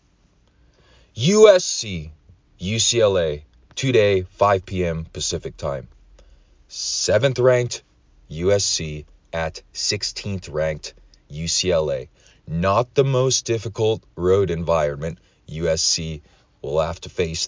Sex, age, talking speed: male, 30-49, 85 wpm